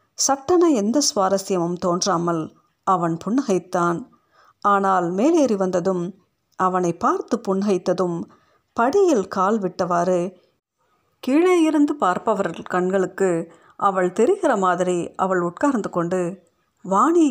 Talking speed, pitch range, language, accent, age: 85 wpm, 180-215 Hz, Tamil, native, 50-69